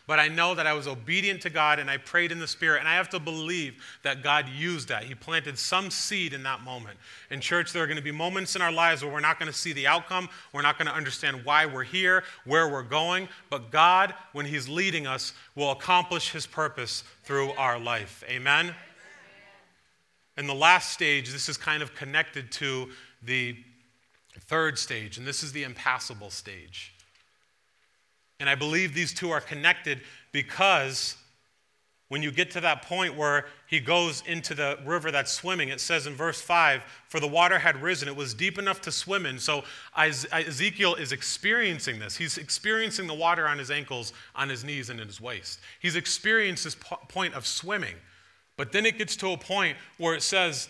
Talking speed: 200 wpm